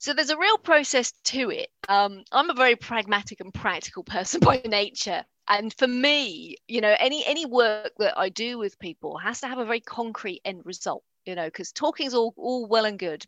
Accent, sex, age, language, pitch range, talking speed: British, female, 40-59, English, 205-275 Hz, 215 wpm